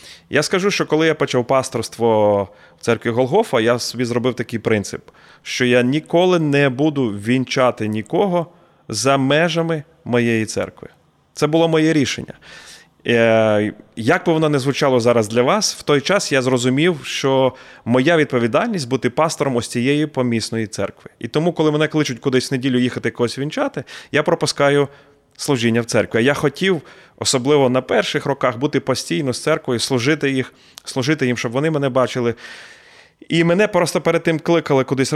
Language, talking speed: Ukrainian, 160 wpm